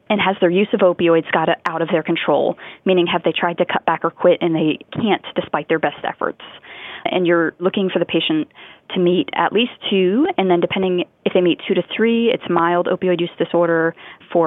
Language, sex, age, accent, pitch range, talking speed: English, female, 20-39, American, 170-200 Hz, 220 wpm